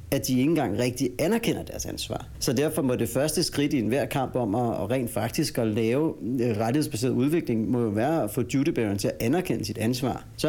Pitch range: 110-130 Hz